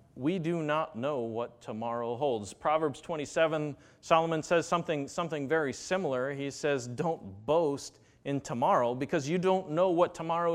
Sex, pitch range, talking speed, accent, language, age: male, 120-160 Hz, 155 wpm, American, English, 40-59